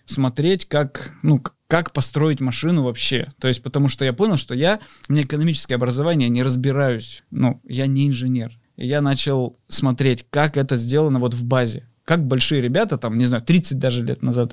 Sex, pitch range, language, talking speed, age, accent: male, 125-150 Hz, Russian, 180 wpm, 20-39, native